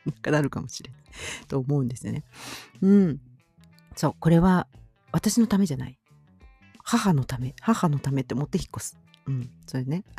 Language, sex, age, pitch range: Japanese, female, 50-69, 130-220 Hz